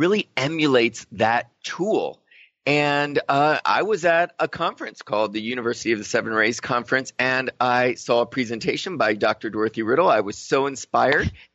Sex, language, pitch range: male, English, 120-160 Hz